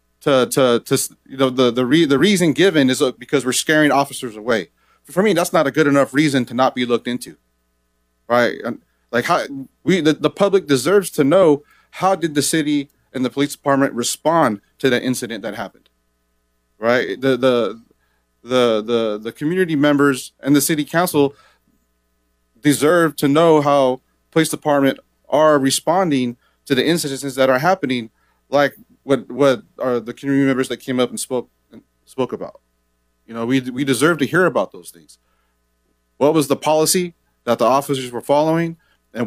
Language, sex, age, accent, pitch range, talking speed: English, male, 30-49, American, 115-145 Hz, 175 wpm